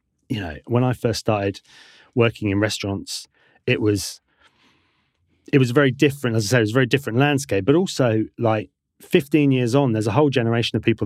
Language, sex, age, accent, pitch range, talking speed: English, male, 30-49, British, 105-135 Hz, 195 wpm